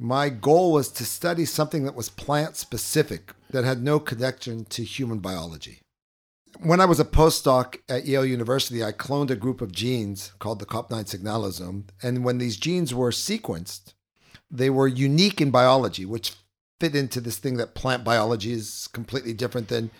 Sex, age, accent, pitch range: male, 50-69, American, 110-140 Hz